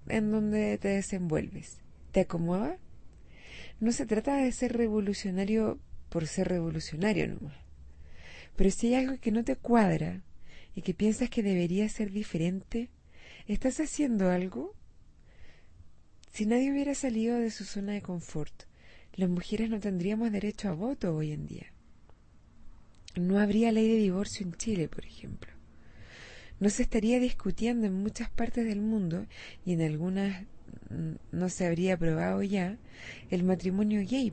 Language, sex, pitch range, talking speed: Spanish, female, 165-225 Hz, 145 wpm